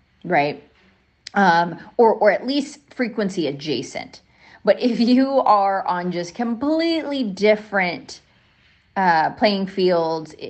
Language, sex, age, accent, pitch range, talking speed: English, female, 30-49, American, 155-205 Hz, 110 wpm